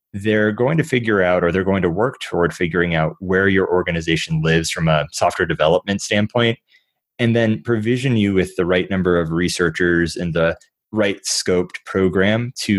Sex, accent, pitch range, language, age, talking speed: male, American, 90-120 Hz, English, 20-39, 180 wpm